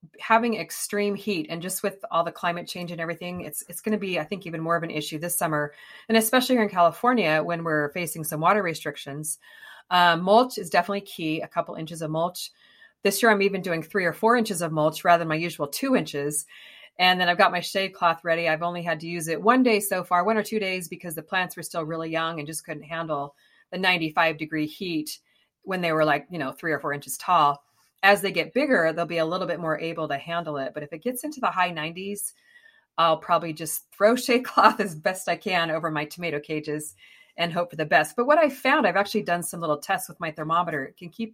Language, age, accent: English, 30-49, American